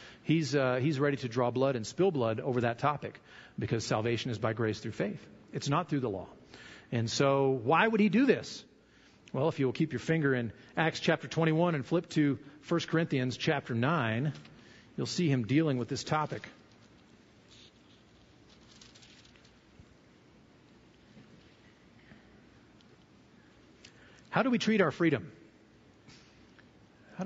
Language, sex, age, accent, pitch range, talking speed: English, male, 40-59, American, 125-165 Hz, 140 wpm